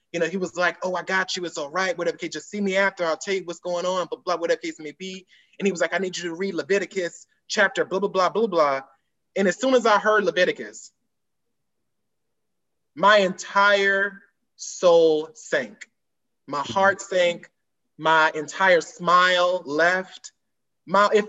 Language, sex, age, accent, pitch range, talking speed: English, male, 20-39, American, 160-205 Hz, 190 wpm